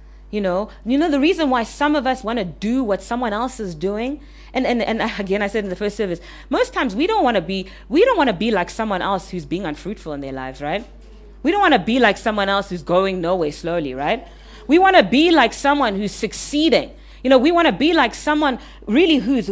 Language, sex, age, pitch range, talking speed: English, female, 30-49, 215-320 Hz, 250 wpm